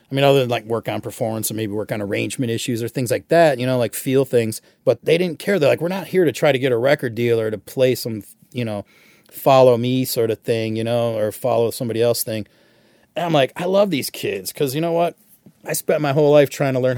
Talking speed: 265 wpm